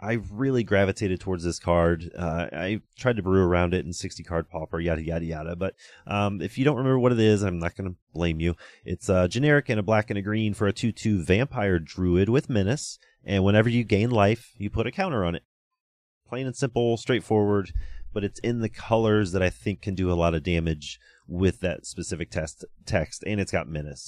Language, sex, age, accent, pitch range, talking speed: English, male, 30-49, American, 90-115 Hz, 220 wpm